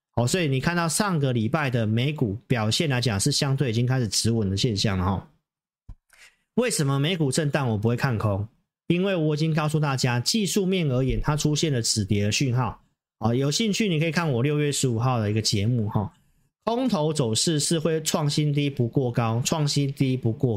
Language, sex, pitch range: Chinese, male, 115-165 Hz